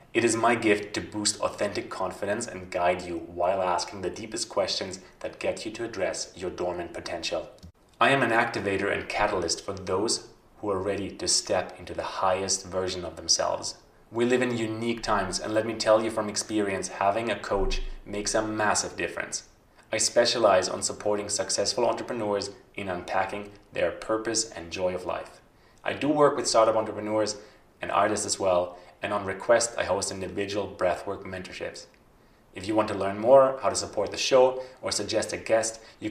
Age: 30-49